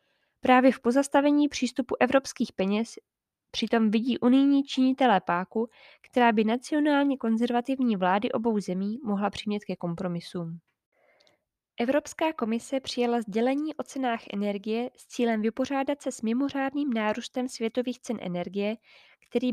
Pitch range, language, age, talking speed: 210-260 Hz, Czech, 20-39, 125 wpm